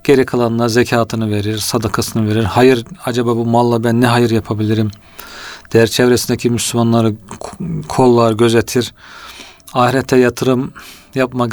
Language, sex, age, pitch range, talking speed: Turkish, male, 40-59, 115-130 Hz, 115 wpm